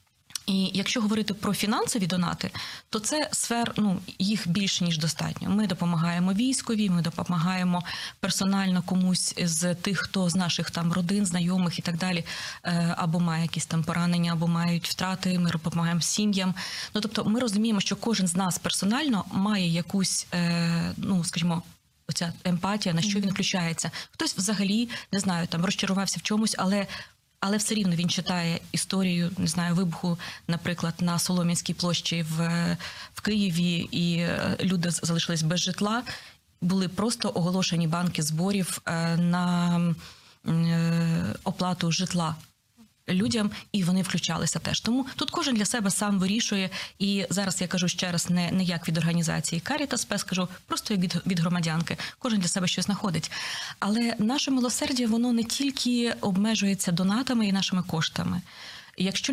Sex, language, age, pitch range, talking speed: female, Ukrainian, 20-39, 170-205 Hz, 150 wpm